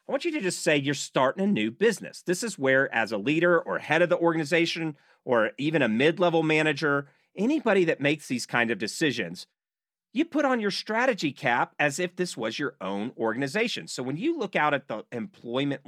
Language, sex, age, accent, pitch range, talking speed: English, male, 40-59, American, 120-180 Hz, 210 wpm